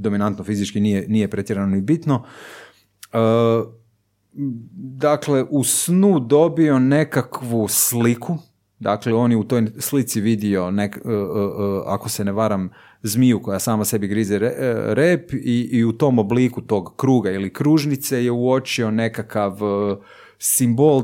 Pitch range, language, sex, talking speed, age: 100-130 Hz, Croatian, male, 140 wpm, 30-49